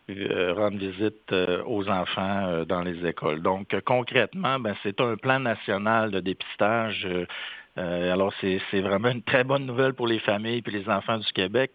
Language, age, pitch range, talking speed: French, 60-79, 95-115 Hz, 165 wpm